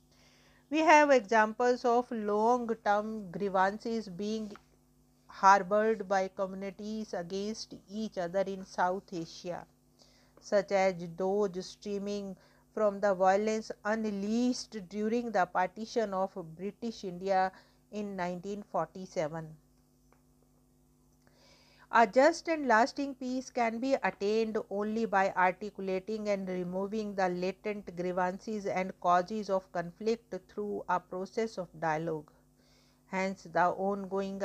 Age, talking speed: 50-69, 105 wpm